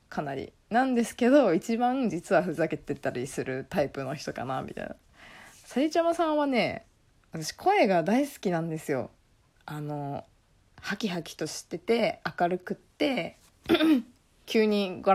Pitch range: 165-245 Hz